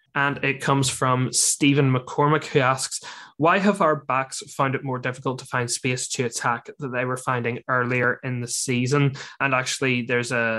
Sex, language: male, English